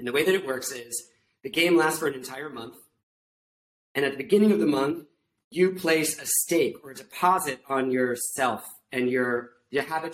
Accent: American